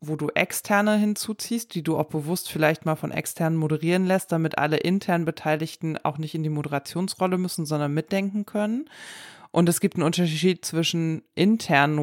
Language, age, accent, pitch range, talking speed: German, 20-39, German, 155-180 Hz, 170 wpm